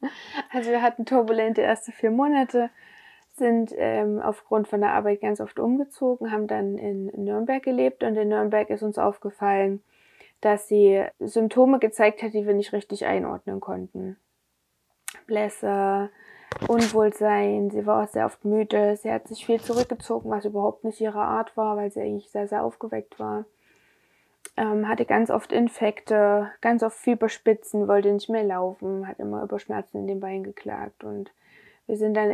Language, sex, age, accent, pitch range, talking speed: German, female, 20-39, German, 200-230 Hz, 165 wpm